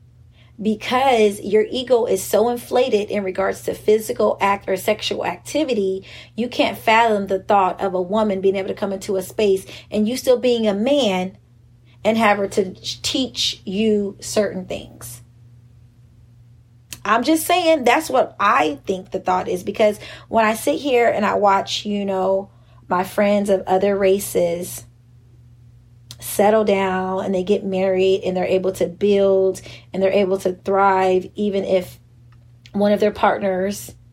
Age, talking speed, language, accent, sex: 30-49, 160 wpm, English, American, female